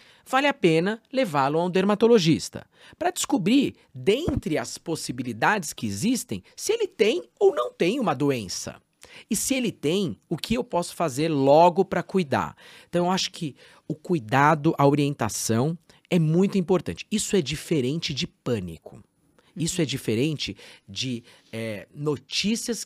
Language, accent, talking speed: Portuguese, Brazilian, 145 wpm